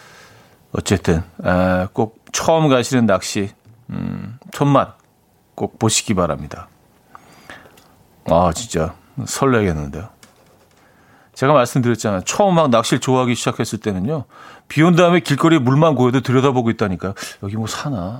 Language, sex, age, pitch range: Korean, male, 40-59, 110-150 Hz